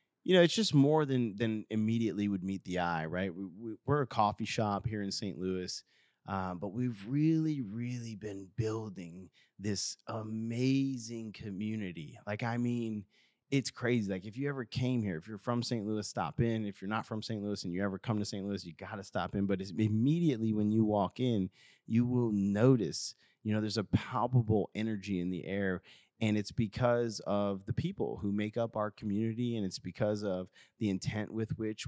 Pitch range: 100-120 Hz